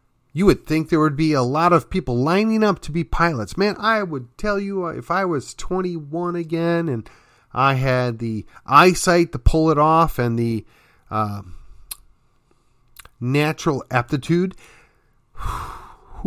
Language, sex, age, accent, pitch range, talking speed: English, male, 40-59, American, 105-150 Hz, 150 wpm